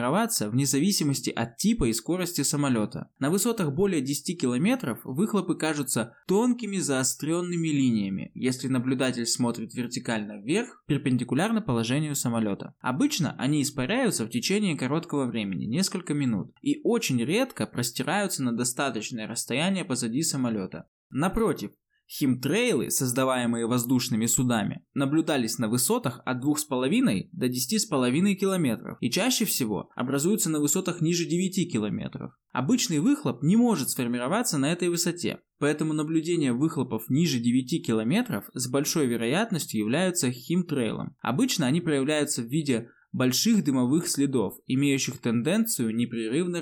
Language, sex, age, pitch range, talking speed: Russian, male, 20-39, 125-175 Hz, 120 wpm